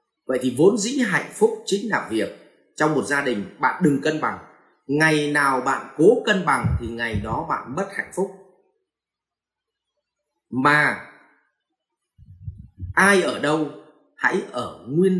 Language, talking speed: Vietnamese, 145 wpm